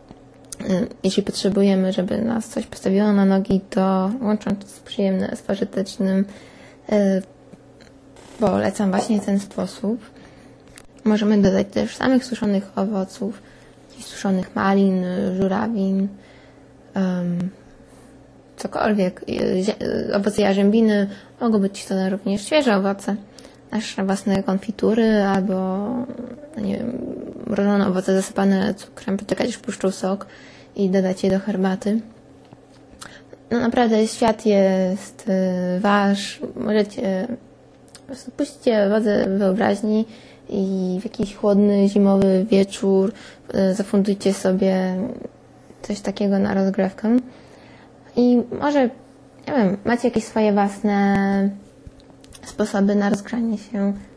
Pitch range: 195-220 Hz